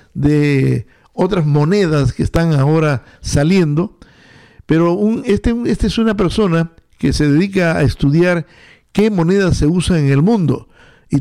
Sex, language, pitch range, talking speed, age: male, English, 145-200 Hz, 140 wpm, 60-79